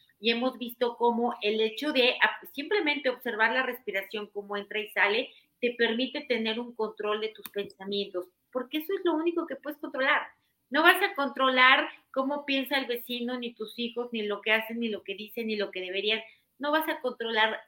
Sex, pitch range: female, 205-250 Hz